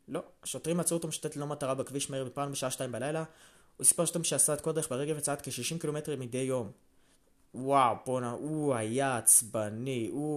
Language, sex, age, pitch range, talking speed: Hebrew, male, 20-39, 115-155 Hz, 170 wpm